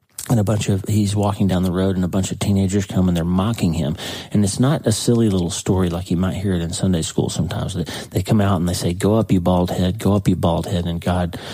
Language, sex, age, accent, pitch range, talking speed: English, male, 40-59, American, 90-105 Hz, 280 wpm